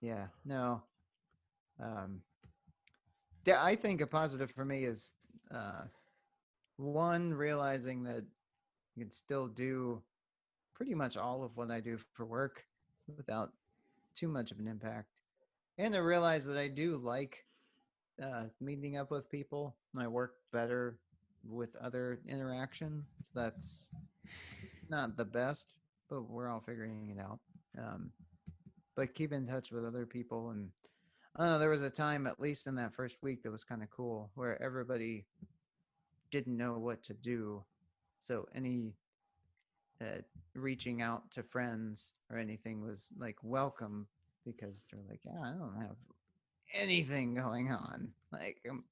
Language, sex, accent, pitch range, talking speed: English, male, American, 115-140 Hz, 150 wpm